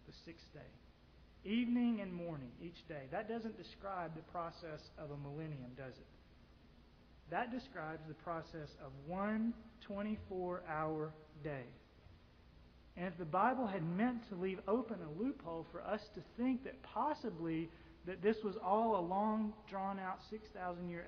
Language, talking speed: English, 145 wpm